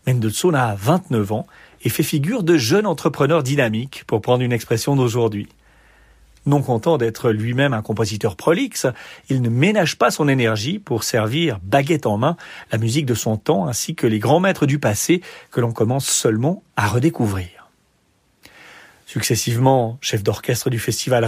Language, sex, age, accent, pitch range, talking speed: French, male, 40-59, French, 115-150 Hz, 160 wpm